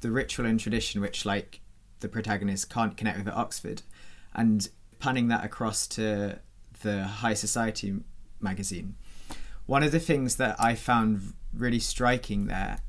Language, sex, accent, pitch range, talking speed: English, male, British, 100-115 Hz, 150 wpm